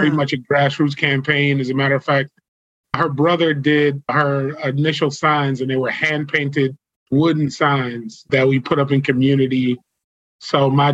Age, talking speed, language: 20-39, 165 wpm, English